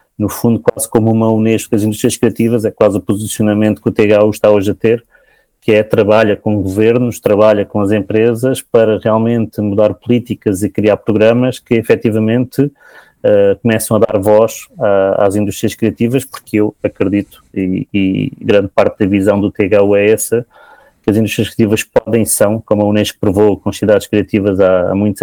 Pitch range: 100-110 Hz